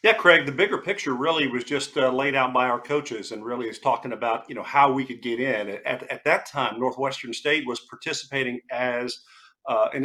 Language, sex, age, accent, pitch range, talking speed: English, male, 50-69, American, 130-155 Hz, 220 wpm